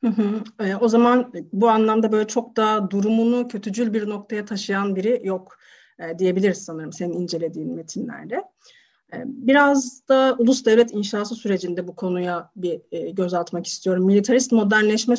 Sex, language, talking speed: female, Turkish, 140 wpm